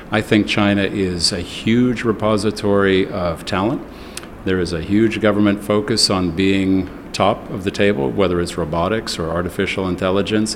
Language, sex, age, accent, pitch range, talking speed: English, male, 50-69, American, 95-110 Hz, 155 wpm